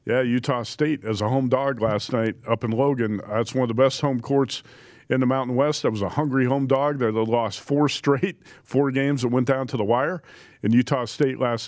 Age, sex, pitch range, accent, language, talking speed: 40-59, male, 115-140 Hz, American, English, 230 wpm